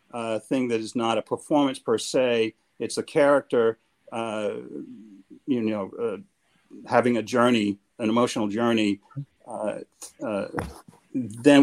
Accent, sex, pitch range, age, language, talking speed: American, male, 110-145 Hz, 50-69, English, 135 wpm